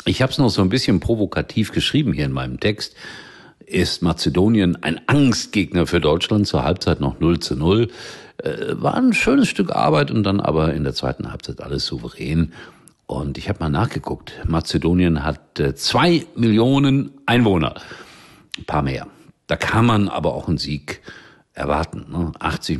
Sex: male